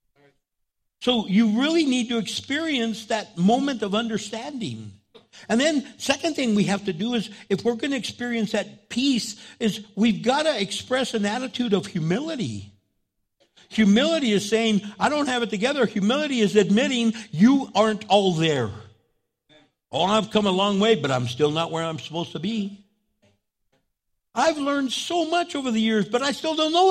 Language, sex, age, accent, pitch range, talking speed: English, male, 60-79, American, 195-275 Hz, 170 wpm